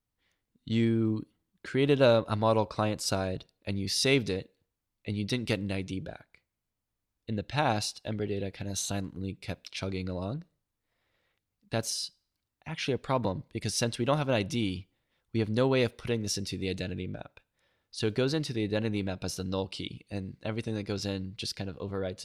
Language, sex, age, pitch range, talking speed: English, male, 10-29, 100-120 Hz, 190 wpm